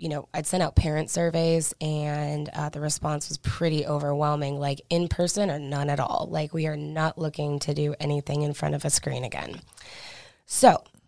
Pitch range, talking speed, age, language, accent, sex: 150-170 Hz, 195 wpm, 20-39, English, American, female